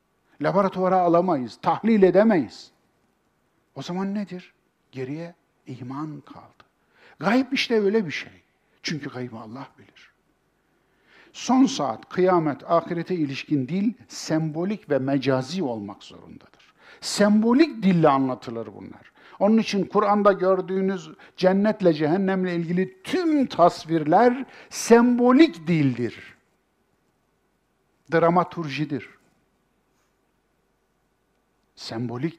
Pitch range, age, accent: 140-205 Hz, 60-79, native